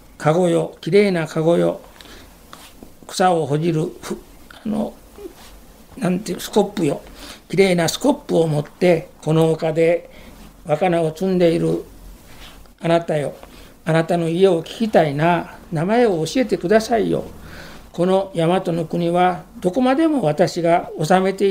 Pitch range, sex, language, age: 155-205 Hz, male, Japanese, 60-79